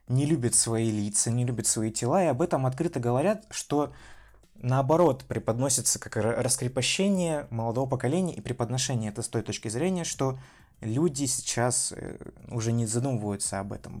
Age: 20-39